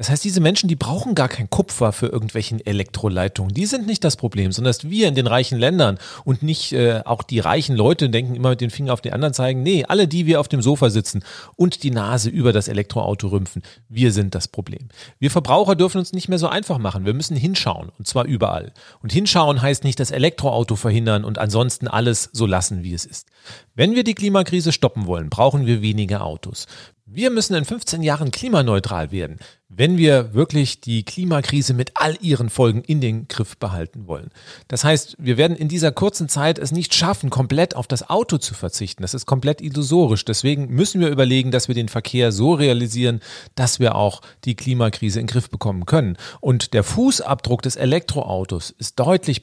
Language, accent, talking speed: German, German, 205 wpm